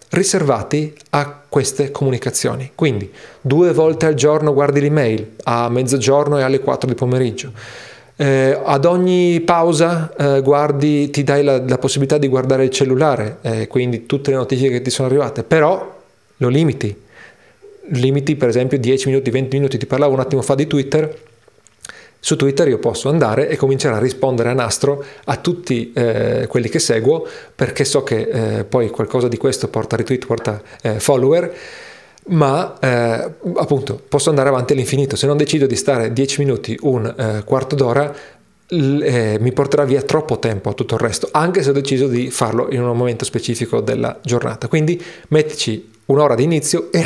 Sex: male